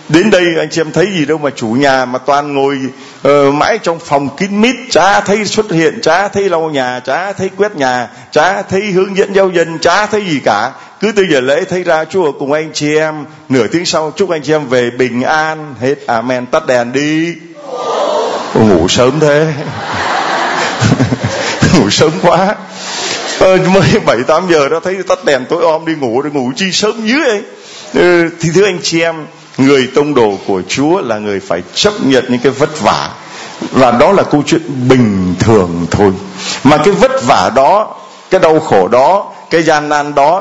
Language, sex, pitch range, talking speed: Vietnamese, male, 135-185 Hz, 200 wpm